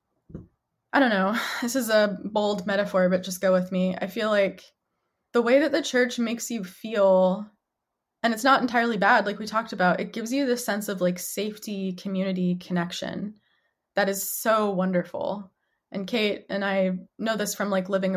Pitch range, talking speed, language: 185-220 Hz, 185 wpm, English